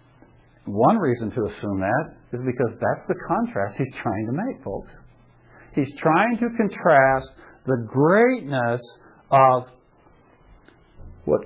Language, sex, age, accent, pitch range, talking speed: English, male, 60-79, American, 110-155 Hz, 120 wpm